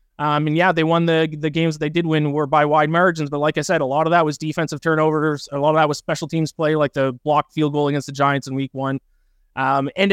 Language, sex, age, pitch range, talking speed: English, male, 20-39, 140-170 Hz, 280 wpm